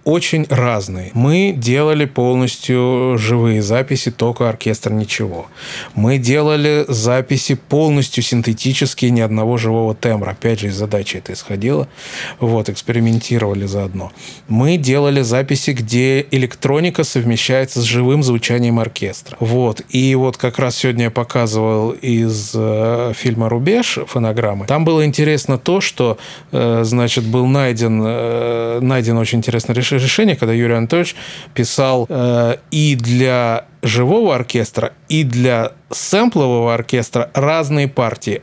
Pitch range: 120-150 Hz